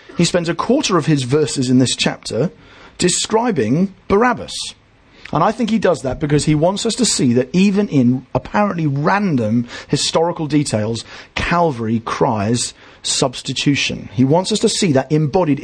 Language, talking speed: English, 155 wpm